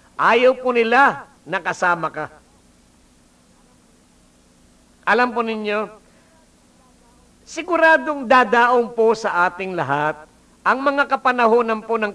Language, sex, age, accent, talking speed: English, male, 50-69, Filipino, 85 wpm